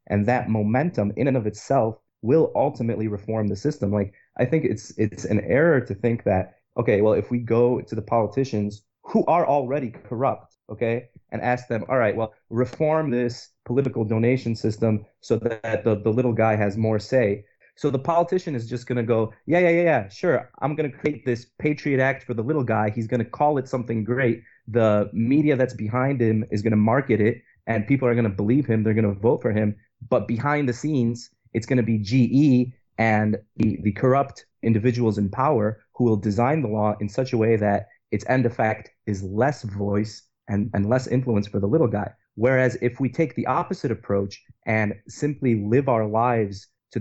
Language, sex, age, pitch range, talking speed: English, male, 30-49, 105-130 Hz, 200 wpm